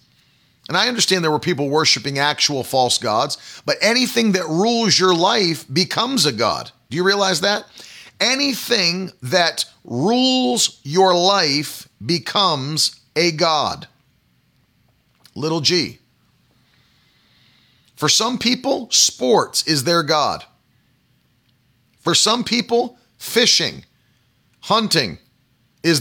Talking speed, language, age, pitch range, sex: 105 wpm, English, 40-59, 135-190 Hz, male